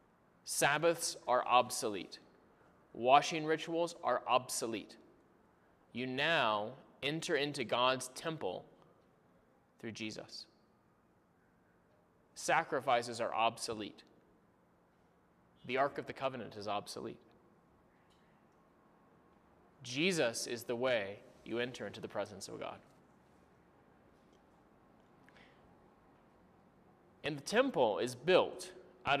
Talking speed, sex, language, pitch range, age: 85 wpm, male, English, 120-160 Hz, 30-49